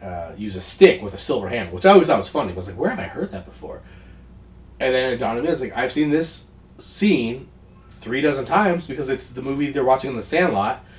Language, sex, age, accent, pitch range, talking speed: English, male, 30-49, American, 120-190 Hz, 260 wpm